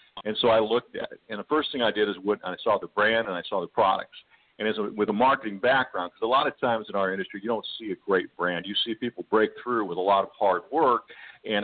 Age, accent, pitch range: 50-69, American, 100-120 Hz